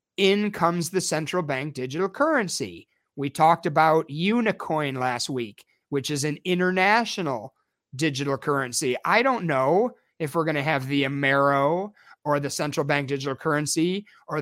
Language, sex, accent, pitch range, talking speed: English, male, American, 150-190 Hz, 150 wpm